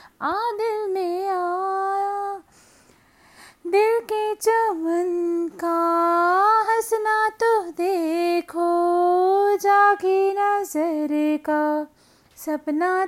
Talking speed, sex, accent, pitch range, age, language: 65 wpm, female, native, 295-380 Hz, 30-49, Hindi